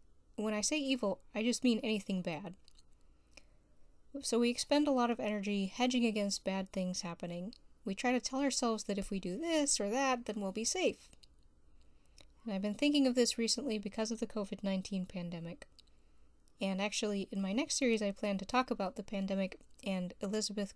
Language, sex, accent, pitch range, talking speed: English, female, American, 180-230 Hz, 185 wpm